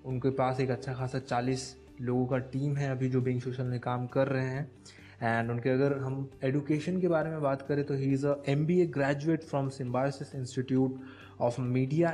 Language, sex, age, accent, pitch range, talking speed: Hindi, male, 20-39, native, 130-150 Hz, 200 wpm